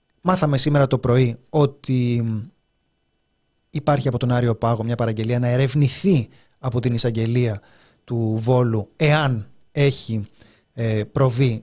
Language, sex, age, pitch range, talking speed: Greek, male, 30-49, 115-155 Hz, 115 wpm